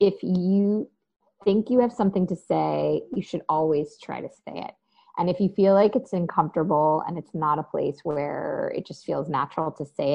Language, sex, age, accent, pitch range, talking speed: English, female, 20-39, American, 150-190 Hz, 200 wpm